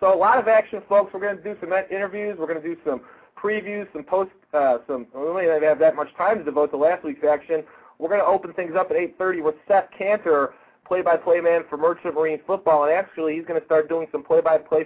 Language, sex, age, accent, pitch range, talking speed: English, male, 40-59, American, 155-195 Hz, 250 wpm